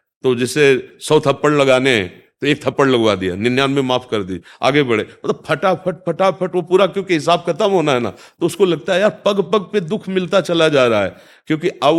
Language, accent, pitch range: Hindi, native, 115-155 Hz